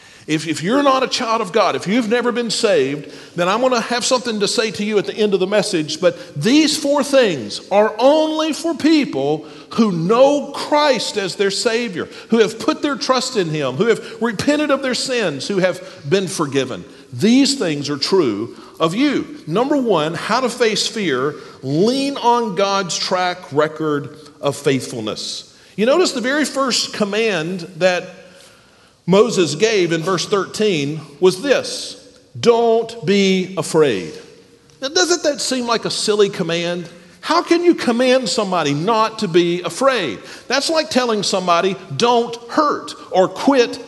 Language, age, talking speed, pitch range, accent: English, 40-59, 165 wpm, 180-260 Hz, American